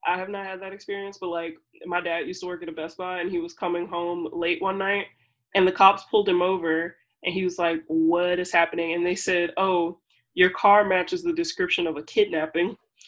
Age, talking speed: 20-39, 230 wpm